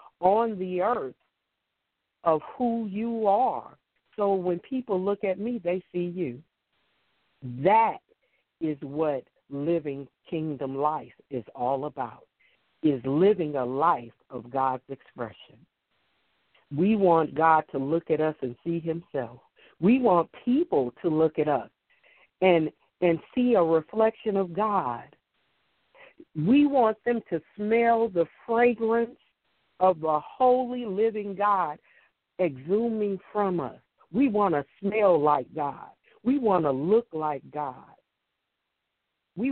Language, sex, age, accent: English, female, 50-69, American